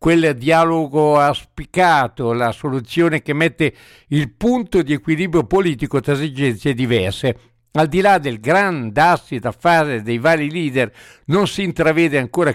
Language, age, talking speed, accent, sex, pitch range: Italian, 60-79, 145 wpm, native, male, 130-165 Hz